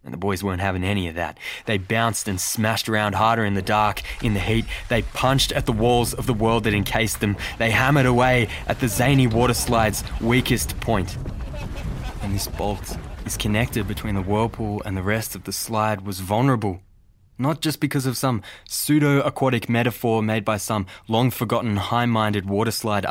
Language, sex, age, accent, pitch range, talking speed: English, male, 20-39, Australian, 90-110 Hz, 180 wpm